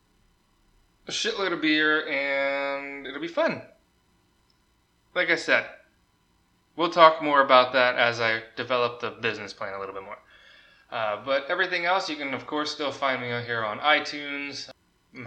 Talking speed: 160 wpm